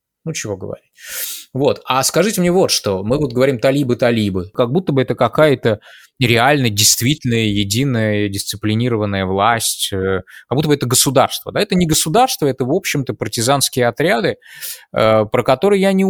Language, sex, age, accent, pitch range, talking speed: Russian, male, 20-39, native, 100-145 Hz, 155 wpm